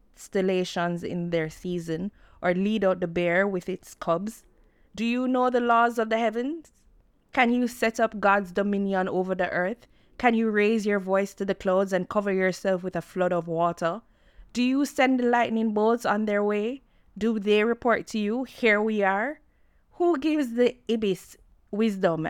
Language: English